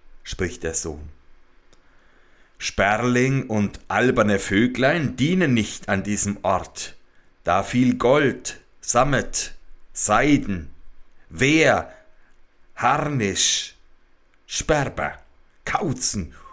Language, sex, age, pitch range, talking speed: German, male, 60-79, 80-135 Hz, 75 wpm